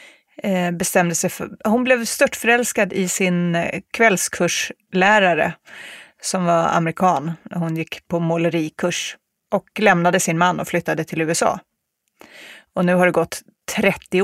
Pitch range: 165-190 Hz